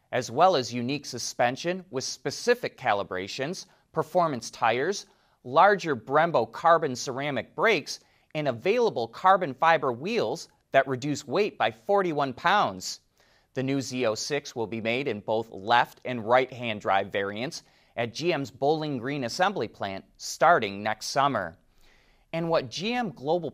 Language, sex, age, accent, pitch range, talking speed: English, male, 30-49, American, 125-200 Hz, 135 wpm